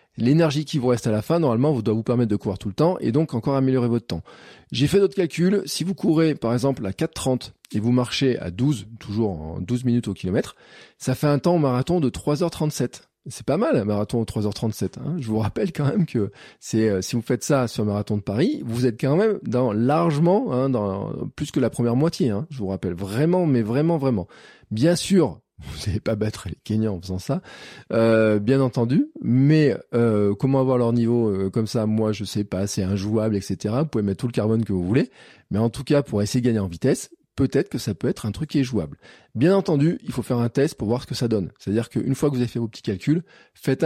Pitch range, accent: 105-140 Hz, French